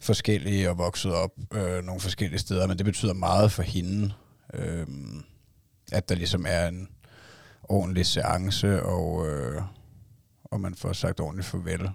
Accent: native